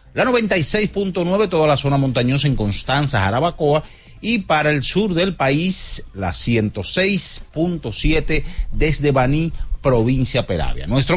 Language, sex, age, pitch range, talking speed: Spanish, male, 40-59, 120-170 Hz, 120 wpm